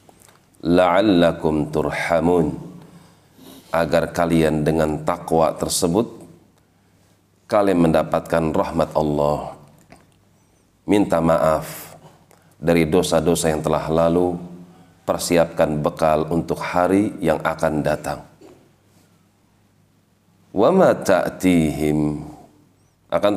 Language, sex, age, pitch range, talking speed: Indonesian, male, 40-59, 80-95 Hz, 70 wpm